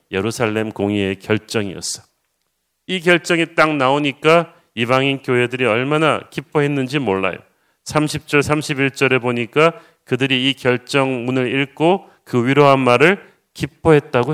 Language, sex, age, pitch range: Korean, male, 40-59, 120-150 Hz